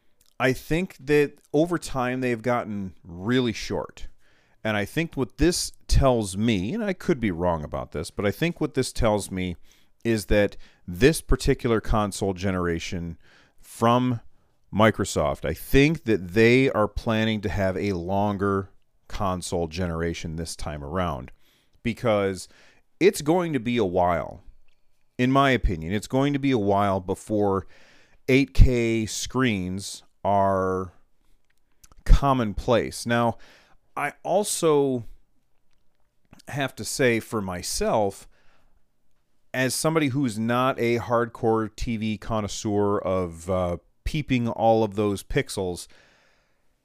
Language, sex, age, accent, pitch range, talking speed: English, male, 40-59, American, 95-130 Hz, 125 wpm